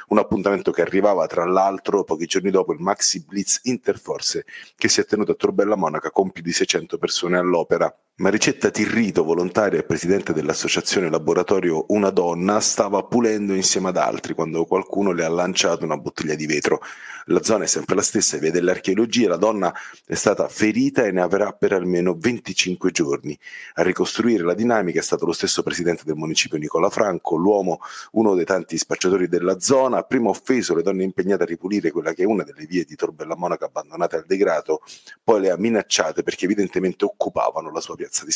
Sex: male